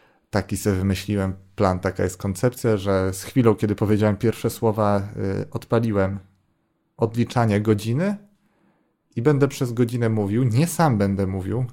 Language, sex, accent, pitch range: Polish, male, native, 100-125 Hz